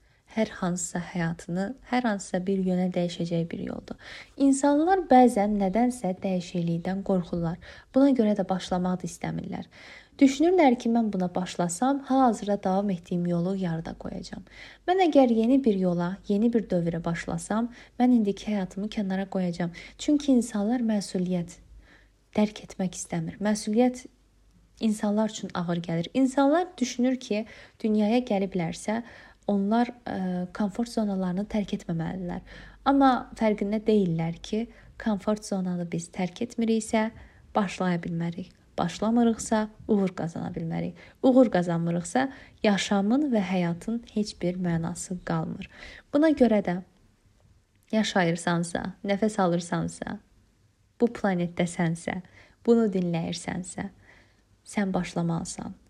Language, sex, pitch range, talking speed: Turkish, female, 175-230 Hz, 110 wpm